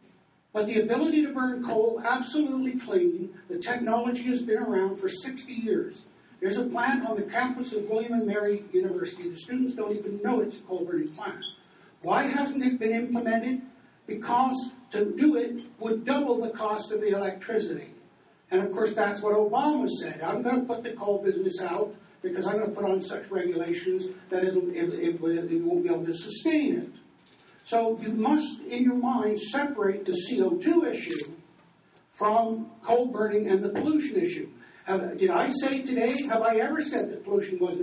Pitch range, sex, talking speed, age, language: 210-290 Hz, male, 180 wpm, 60-79, English